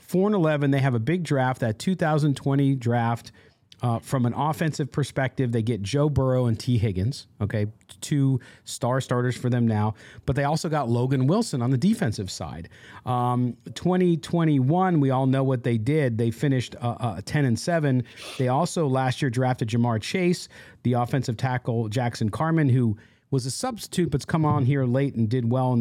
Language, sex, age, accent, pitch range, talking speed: English, male, 40-59, American, 115-150 Hz, 190 wpm